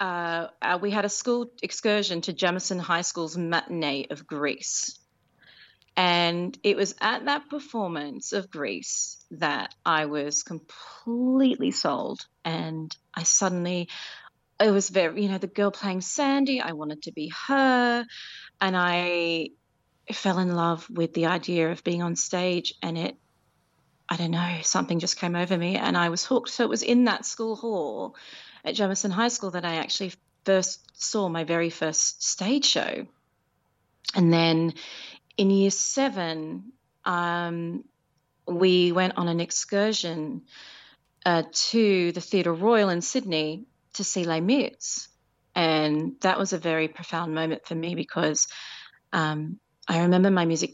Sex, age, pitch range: female, 30-49, 165-200 Hz